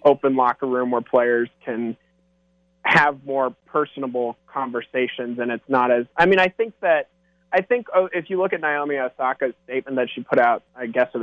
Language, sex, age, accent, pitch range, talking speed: English, male, 20-39, American, 125-170 Hz, 185 wpm